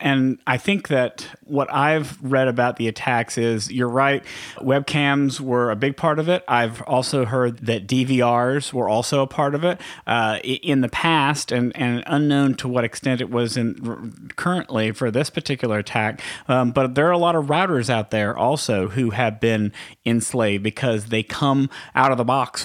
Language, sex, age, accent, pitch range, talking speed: English, male, 40-59, American, 120-140 Hz, 190 wpm